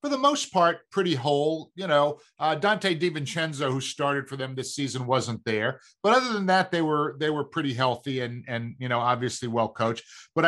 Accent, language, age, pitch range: American, English, 50-69, 135-175 Hz